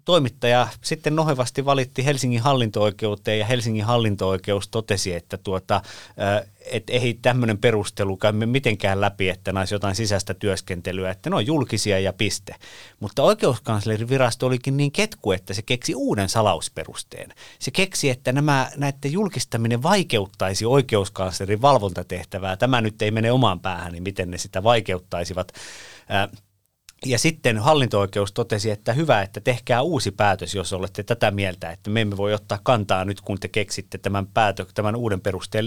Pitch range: 100-130 Hz